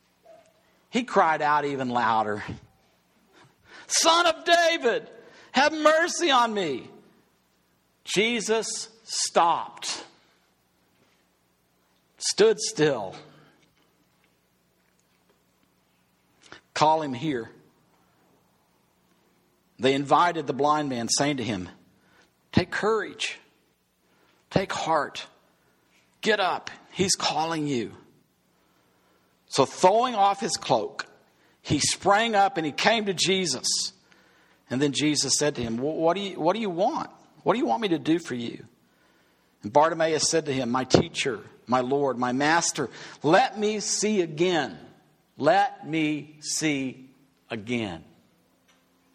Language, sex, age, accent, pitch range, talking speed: English, male, 60-79, American, 125-200 Hz, 105 wpm